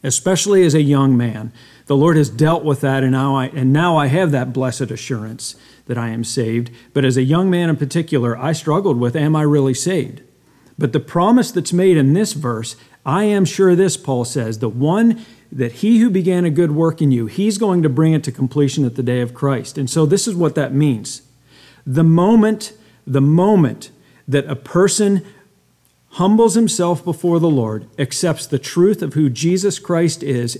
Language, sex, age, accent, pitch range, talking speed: English, male, 50-69, American, 130-175 Hz, 200 wpm